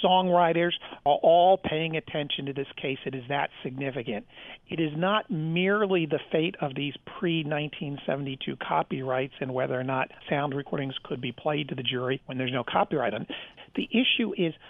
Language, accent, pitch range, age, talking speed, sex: English, American, 140-185 Hz, 50-69, 170 wpm, male